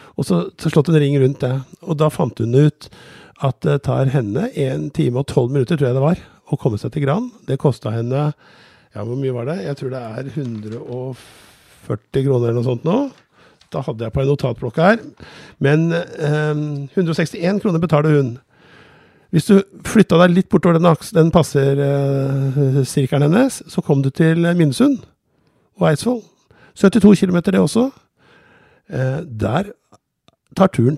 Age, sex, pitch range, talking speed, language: 50-69, male, 125-165 Hz, 175 wpm, English